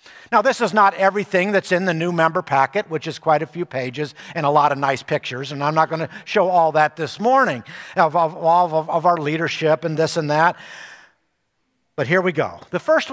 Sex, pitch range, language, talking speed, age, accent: male, 150-220 Hz, English, 225 wpm, 50-69, American